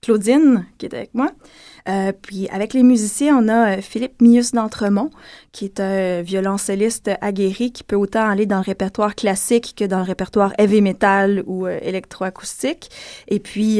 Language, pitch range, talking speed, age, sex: French, 195-225 Hz, 170 wpm, 20-39, female